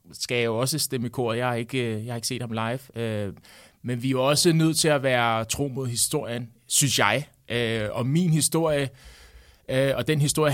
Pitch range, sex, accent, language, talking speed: 115-140 Hz, male, native, Danish, 195 wpm